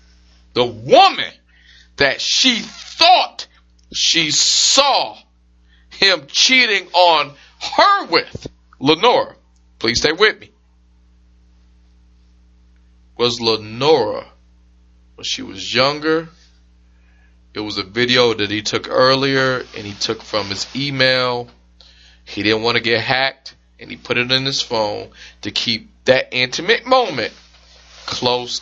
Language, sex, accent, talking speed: English, male, American, 115 wpm